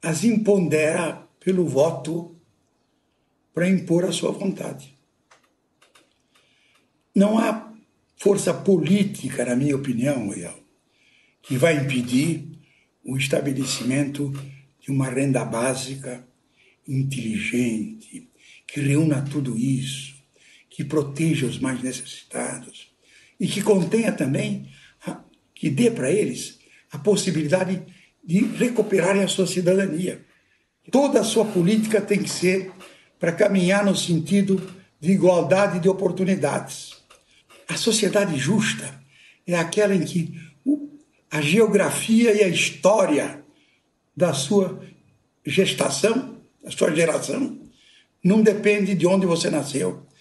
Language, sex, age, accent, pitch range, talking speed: Portuguese, male, 60-79, Brazilian, 145-200 Hz, 110 wpm